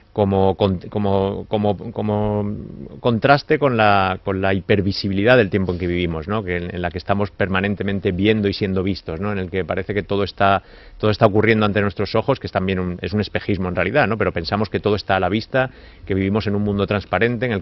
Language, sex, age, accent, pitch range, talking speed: Spanish, male, 30-49, Spanish, 90-105 Hz, 230 wpm